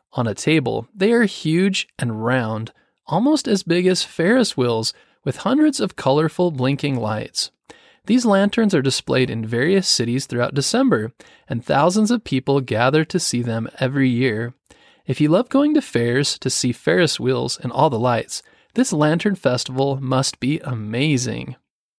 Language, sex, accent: English, male, American